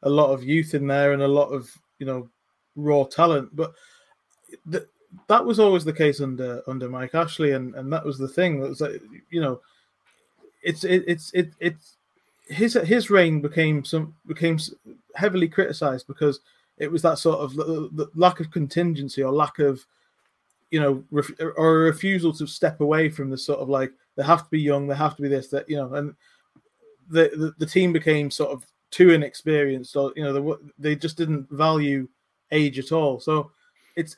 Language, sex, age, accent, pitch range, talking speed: English, male, 20-39, British, 140-165 Hz, 200 wpm